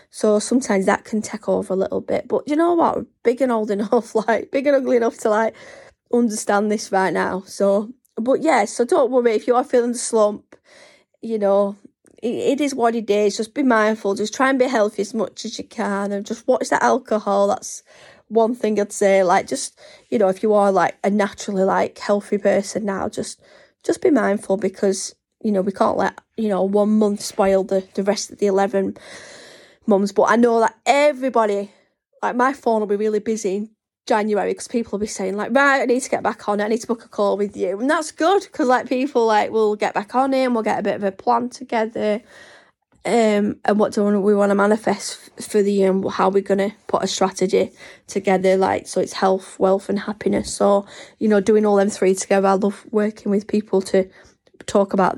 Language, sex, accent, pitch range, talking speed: English, female, British, 200-235 Hz, 225 wpm